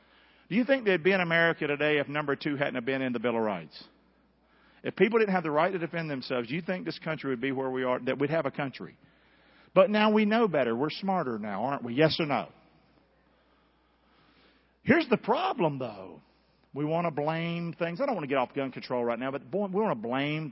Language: English